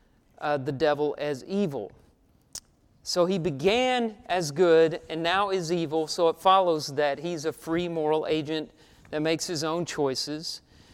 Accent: American